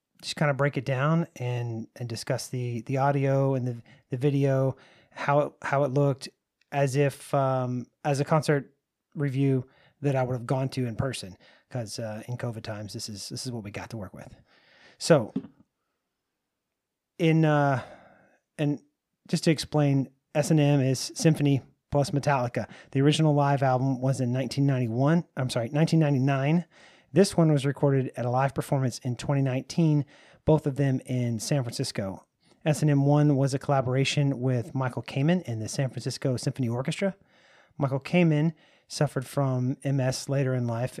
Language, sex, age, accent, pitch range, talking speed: English, male, 30-49, American, 125-145 Hz, 165 wpm